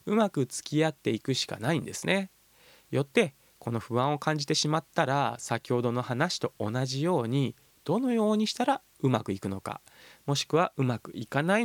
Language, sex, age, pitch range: Japanese, male, 20-39, 125-185 Hz